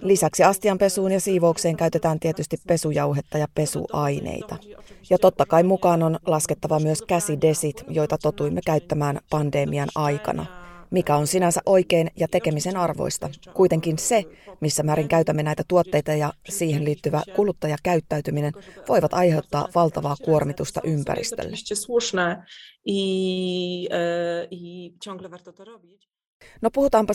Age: 30-49